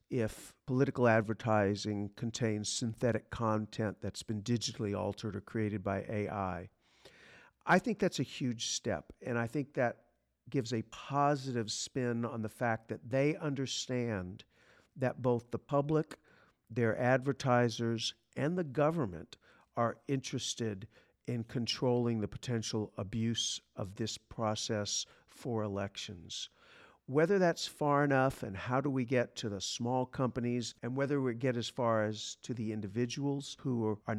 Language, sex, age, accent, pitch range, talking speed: English, male, 50-69, American, 110-135 Hz, 140 wpm